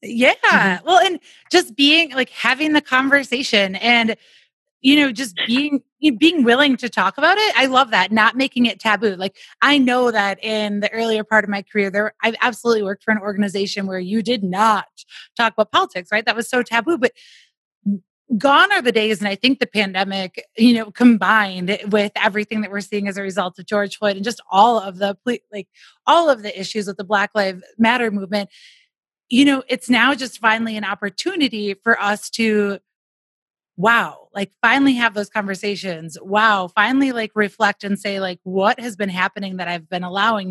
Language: English